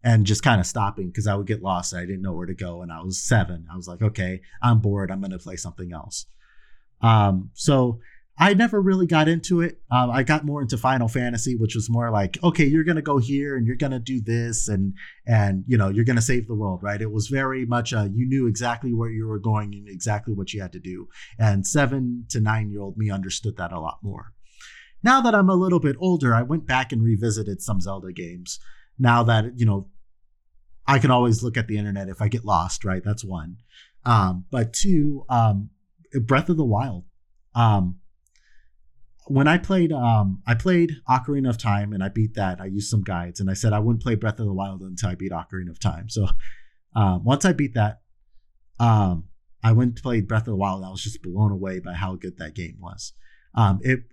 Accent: American